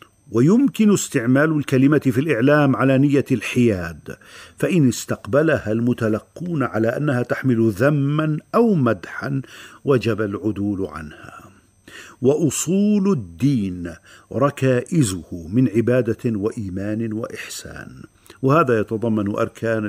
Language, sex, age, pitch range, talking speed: Arabic, male, 50-69, 105-135 Hz, 90 wpm